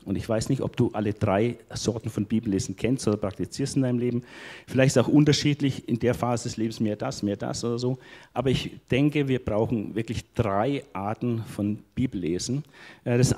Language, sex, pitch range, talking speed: German, male, 105-130 Hz, 195 wpm